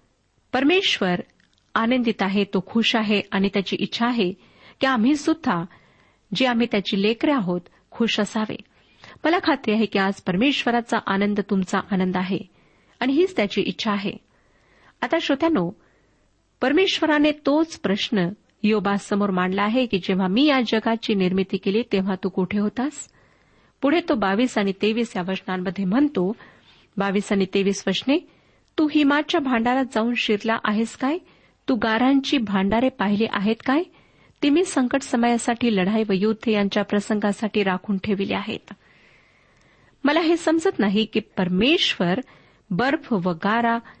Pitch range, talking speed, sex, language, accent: 200-260 Hz, 125 wpm, female, Marathi, native